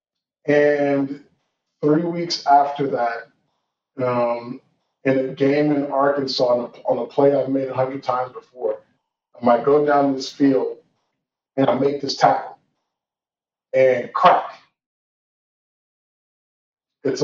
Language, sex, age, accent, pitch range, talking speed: English, male, 20-39, American, 130-145 Hz, 120 wpm